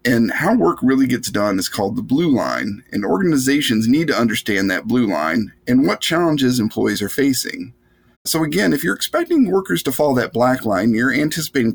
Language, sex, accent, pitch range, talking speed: English, male, American, 115-170 Hz, 195 wpm